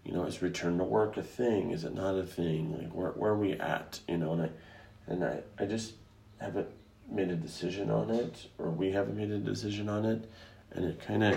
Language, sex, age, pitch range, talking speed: English, male, 30-49, 85-105 Hz, 230 wpm